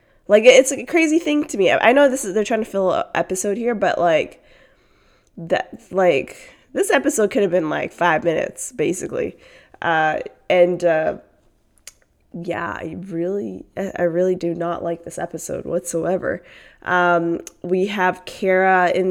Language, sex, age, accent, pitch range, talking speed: English, female, 20-39, American, 170-205 Hz, 155 wpm